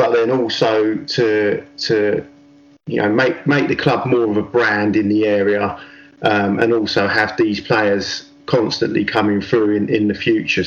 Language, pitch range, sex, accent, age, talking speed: English, 105-145 Hz, male, British, 30-49, 175 wpm